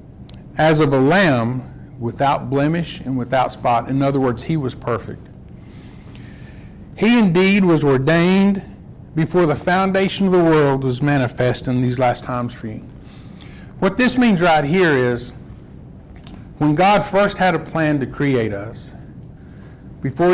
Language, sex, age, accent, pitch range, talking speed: English, male, 50-69, American, 130-170 Hz, 145 wpm